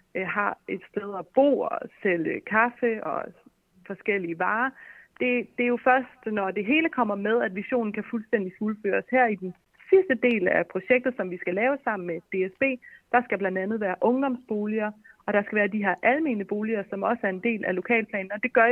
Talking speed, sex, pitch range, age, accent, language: 205 wpm, female, 200-255 Hz, 30-49, native, Danish